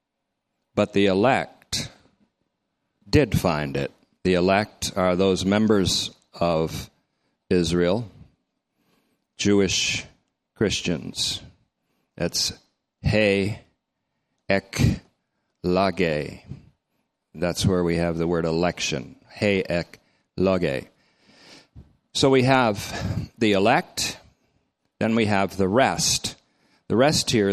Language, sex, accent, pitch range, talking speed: English, male, American, 85-105 Hz, 90 wpm